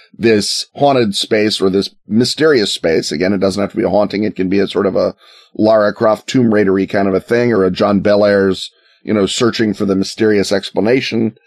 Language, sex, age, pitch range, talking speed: English, male, 30-49, 100-125 Hz, 215 wpm